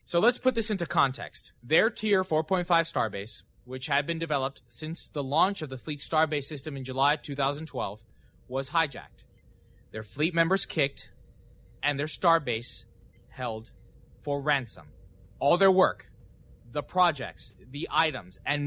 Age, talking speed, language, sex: 20-39, 145 wpm, English, male